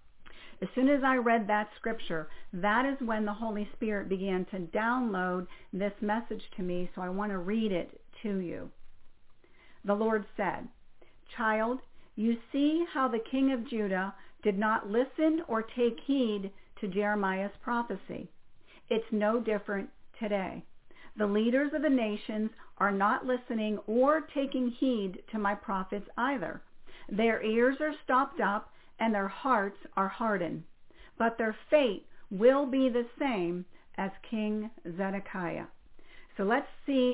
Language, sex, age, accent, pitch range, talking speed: English, female, 50-69, American, 200-250 Hz, 145 wpm